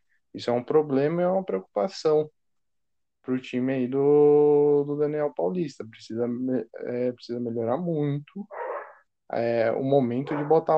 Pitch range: 115-135 Hz